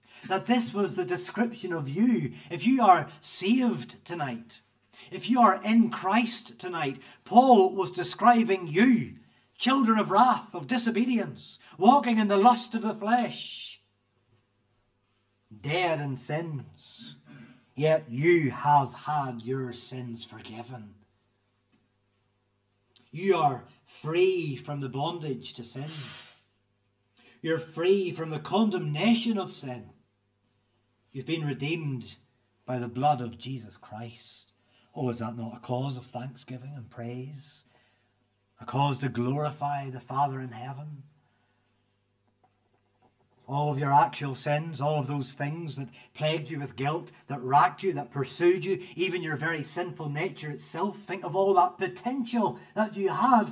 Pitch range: 120-185 Hz